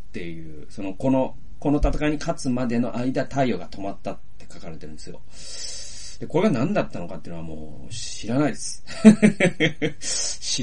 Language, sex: Japanese, male